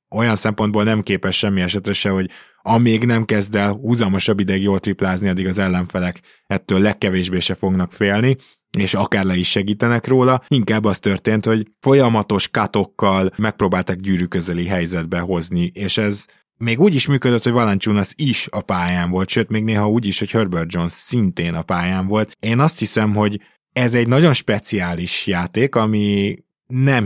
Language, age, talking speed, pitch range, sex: Hungarian, 20-39, 165 wpm, 95-110 Hz, male